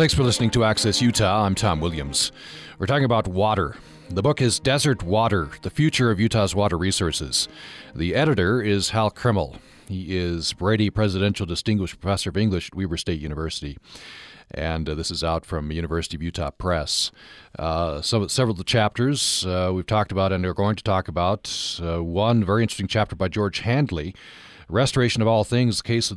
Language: English